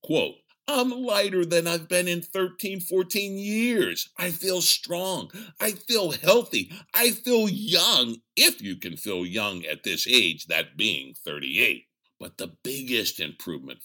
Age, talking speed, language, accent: 50-69, 145 wpm, English, American